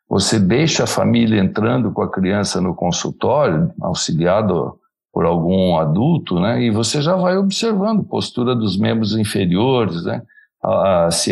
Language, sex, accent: Portuguese, male, Brazilian